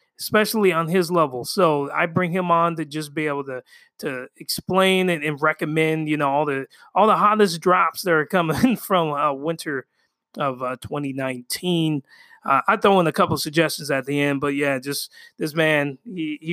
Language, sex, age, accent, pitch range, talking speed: English, male, 20-39, American, 145-185 Hz, 195 wpm